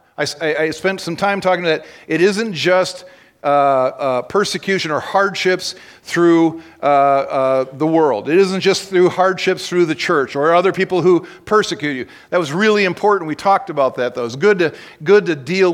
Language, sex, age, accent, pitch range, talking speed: English, male, 50-69, American, 175-210 Hz, 190 wpm